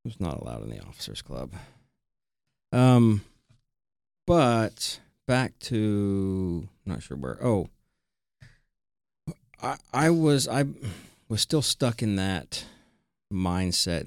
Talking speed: 105 wpm